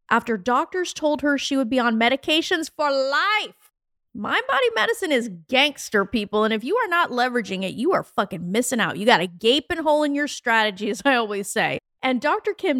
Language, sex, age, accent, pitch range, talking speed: English, female, 30-49, American, 205-295 Hz, 200 wpm